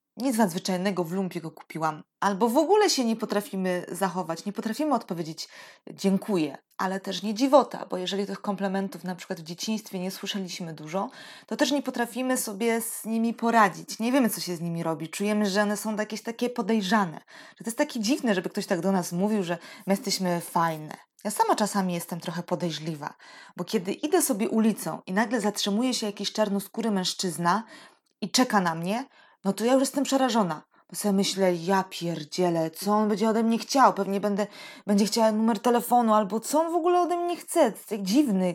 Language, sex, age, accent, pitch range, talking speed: Polish, female, 20-39, native, 185-240 Hz, 190 wpm